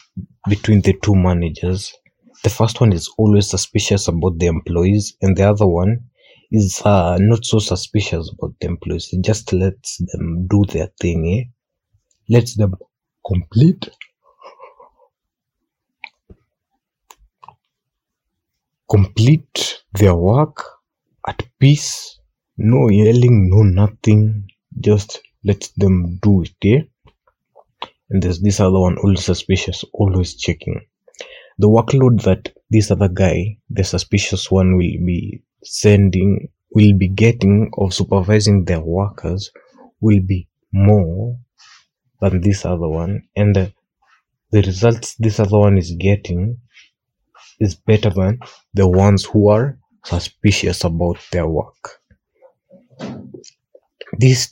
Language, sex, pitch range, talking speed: Swahili, male, 95-110 Hz, 120 wpm